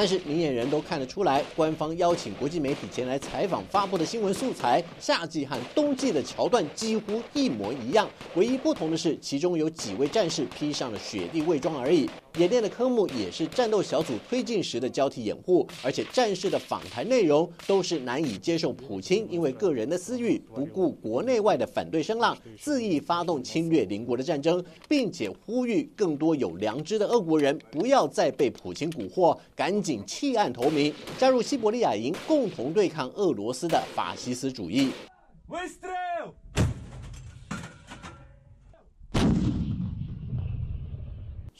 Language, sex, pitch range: Chinese, male, 150-250 Hz